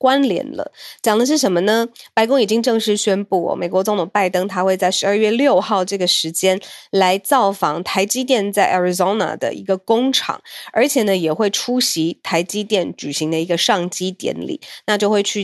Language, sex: Chinese, female